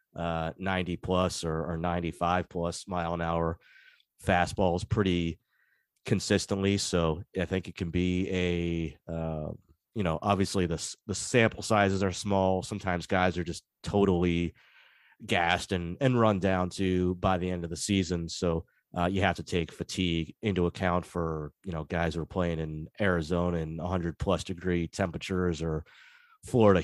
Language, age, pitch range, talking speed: English, 30-49, 85-95 Hz, 160 wpm